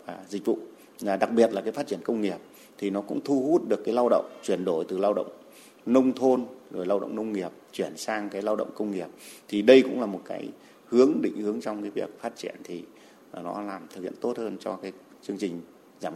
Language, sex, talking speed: Vietnamese, male, 240 wpm